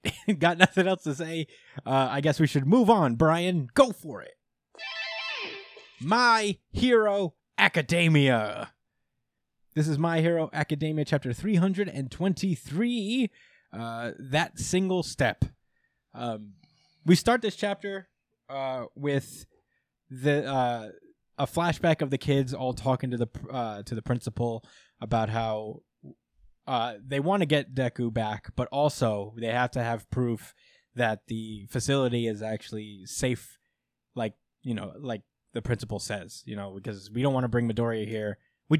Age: 20-39